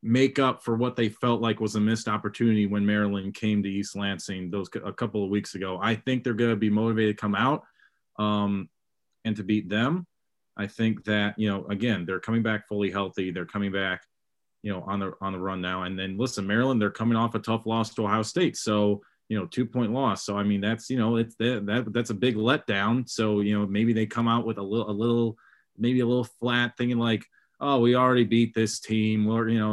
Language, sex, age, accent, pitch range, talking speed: English, male, 30-49, American, 105-125 Hz, 240 wpm